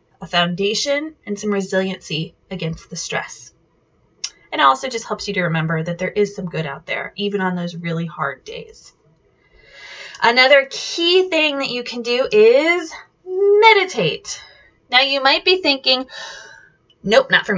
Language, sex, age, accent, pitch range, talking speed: English, female, 20-39, American, 185-275 Hz, 155 wpm